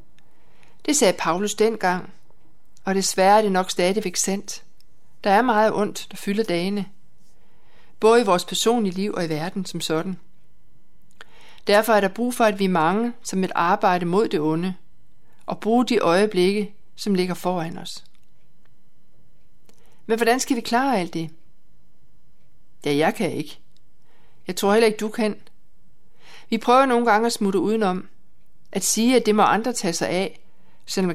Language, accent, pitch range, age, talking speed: Danish, native, 170-215 Hz, 60-79, 165 wpm